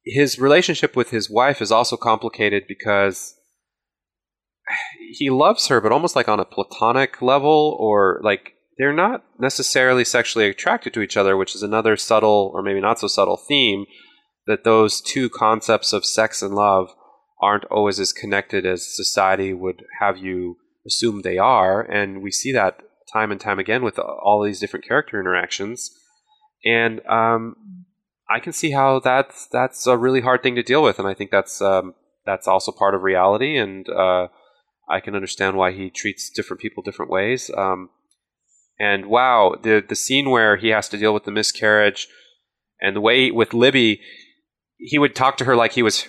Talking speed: 180 wpm